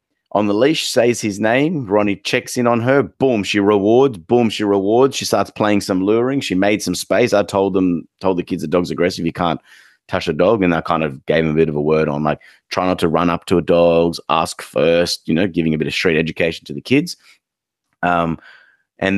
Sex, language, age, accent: male, English, 30-49, Australian